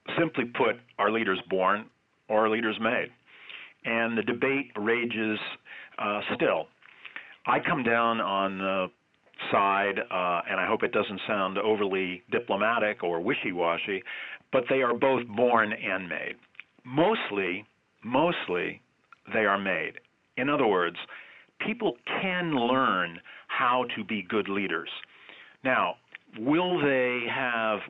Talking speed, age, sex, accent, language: 125 wpm, 40-59, male, American, English